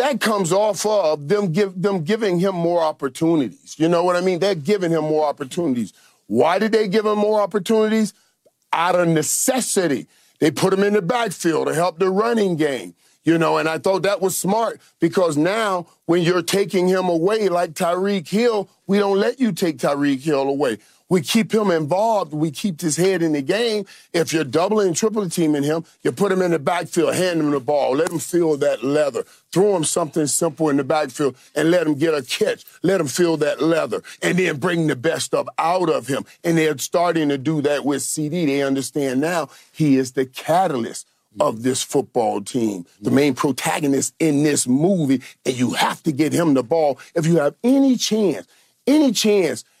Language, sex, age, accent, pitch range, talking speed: English, male, 40-59, American, 150-200 Hz, 200 wpm